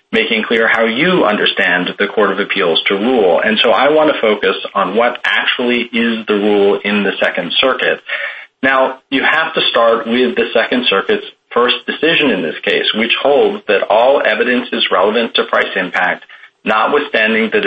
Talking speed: 180 wpm